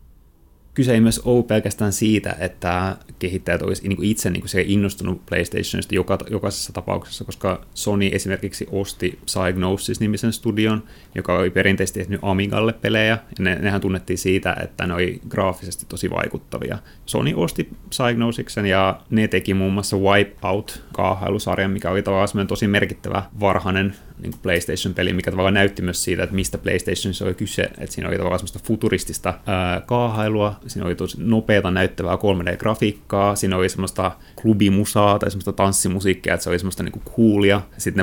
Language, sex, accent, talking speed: Finnish, male, native, 145 wpm